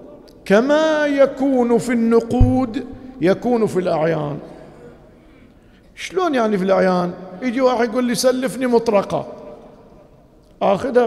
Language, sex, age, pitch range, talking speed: Arabic, male, 50-69, 185-250 Hz, 100 wpm